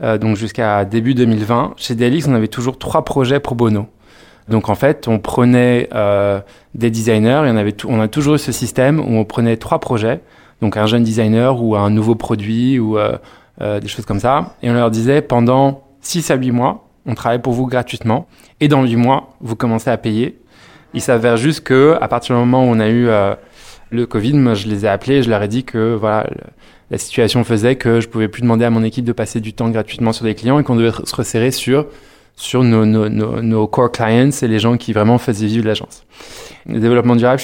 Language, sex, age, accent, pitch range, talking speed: French, male, 20-39, French, 110-125 Hz, 230 wpm